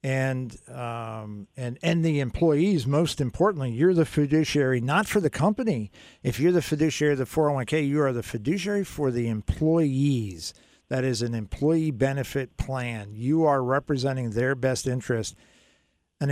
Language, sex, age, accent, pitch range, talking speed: English, male, 50-69, American, 120-150 Hz, 155 wpm